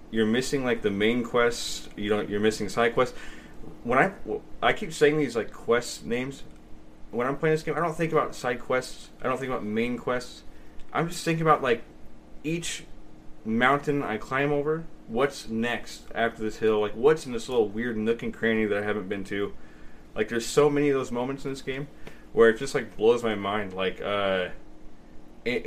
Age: 20-39